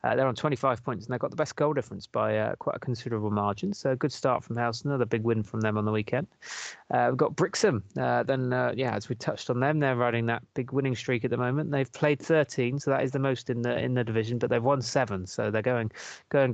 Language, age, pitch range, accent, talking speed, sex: English, 20-39, 115-140 Hz, British, 270 wpm, male